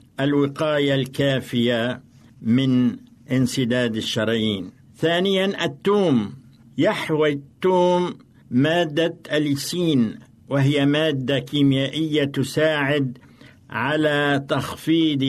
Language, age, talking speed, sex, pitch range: Arabic, 60-79, 65 wpm, male, 130-160 Hz